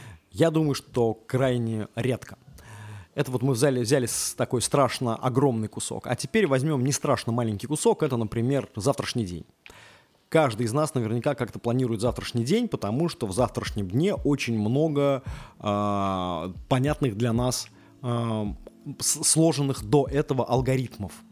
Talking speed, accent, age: 140 wpm, native, 20-39